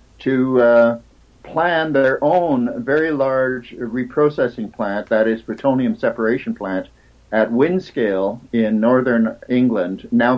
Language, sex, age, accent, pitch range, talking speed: English, male, 60-79, American, 120-165 Hz, 115 wpm